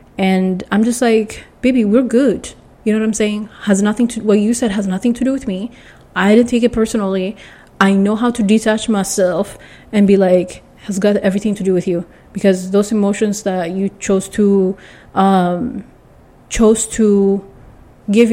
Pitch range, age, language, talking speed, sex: 195-235 Hz, 30-49, English, 185 wpm, female